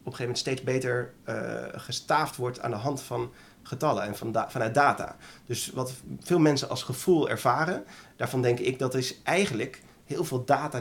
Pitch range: 120-145 Hz